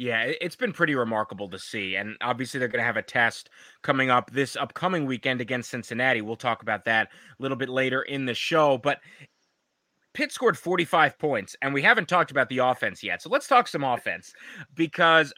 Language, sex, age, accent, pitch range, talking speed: English, male, 20-39, American, 120-165 Hz, 205 wpm